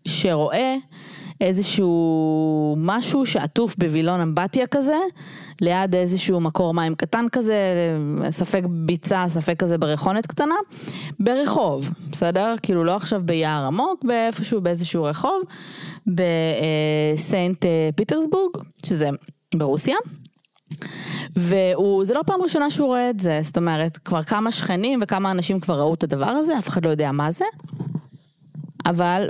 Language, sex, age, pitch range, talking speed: Hebrew, female, 20-39, 155-200 Hz, 125 wpm